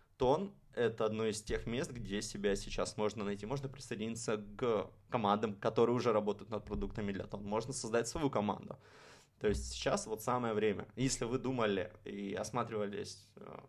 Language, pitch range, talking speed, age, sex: Russian, 105-120 Hz, 160 wpm, 20-39, male